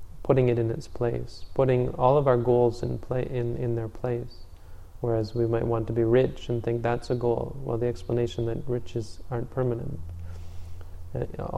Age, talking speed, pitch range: 30-49, 185 wpm, 110-125 Hz